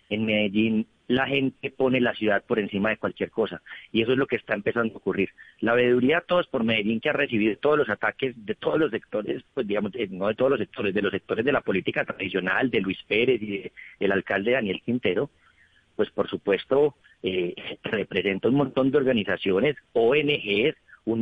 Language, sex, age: Spanish, male, 40-59